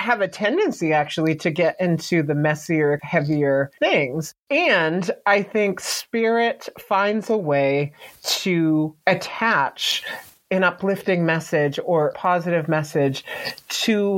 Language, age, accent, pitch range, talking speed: English, 30-49, American, 155-205 Hz, 115 wpm